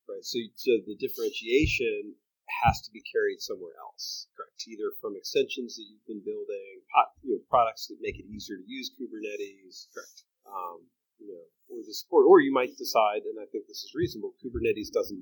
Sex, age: male, 30-49